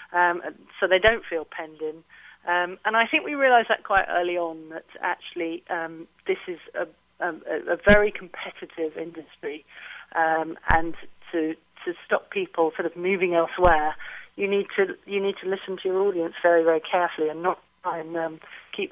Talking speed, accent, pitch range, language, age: 180 wpm, British, 165-190 Hz, English, 40-59